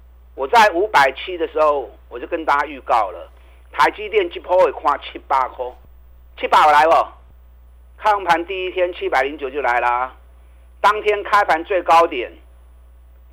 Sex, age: male, 50-69